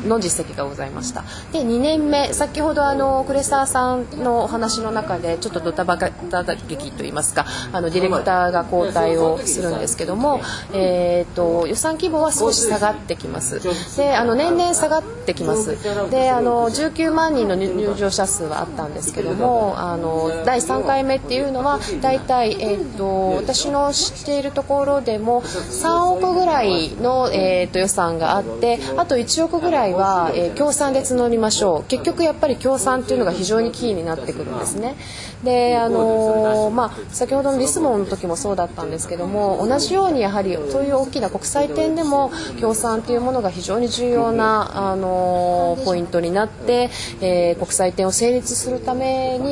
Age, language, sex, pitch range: 20-39, Japanese, female, 180-275 Hz